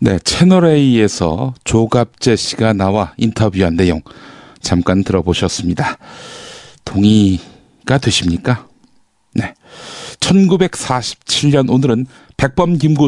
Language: Korean